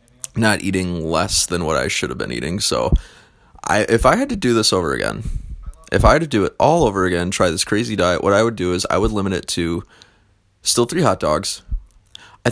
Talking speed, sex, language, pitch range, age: 230 wpm, male, English, 95-115 Hz, 20-39